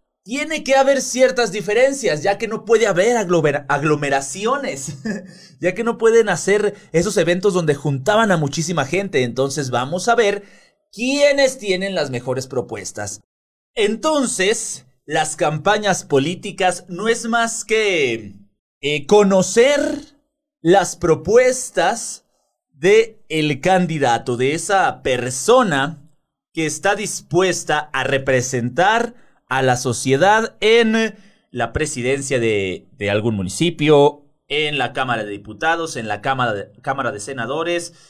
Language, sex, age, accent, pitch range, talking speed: Spanish, male, 30-49, Mexican, 135-210 Hz, 120 wpm